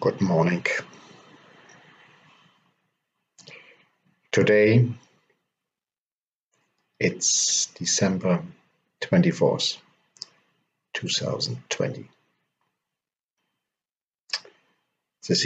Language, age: English, 60-79